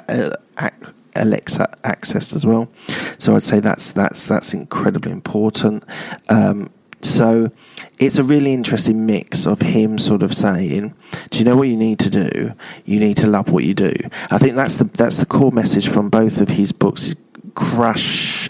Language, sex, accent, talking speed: English, male, British, 170 wpm